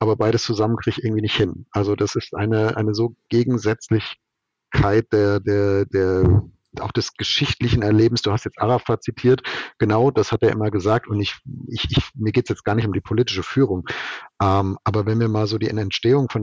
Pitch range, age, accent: 100-120 Hz, 50-69, German